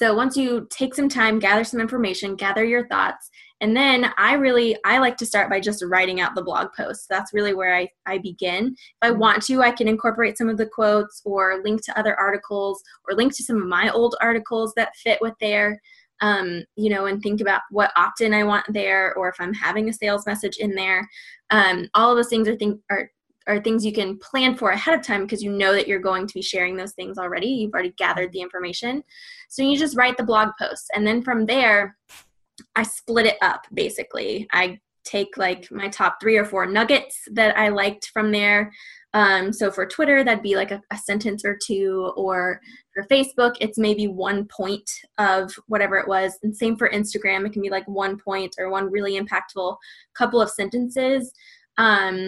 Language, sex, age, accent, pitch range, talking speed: English, female, 10-29, American, 195-230 Hz, 215 wpm